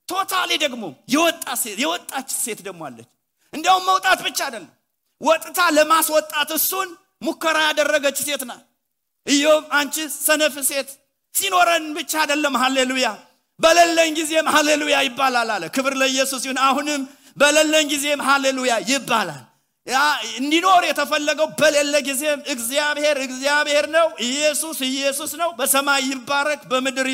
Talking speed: 125 wpm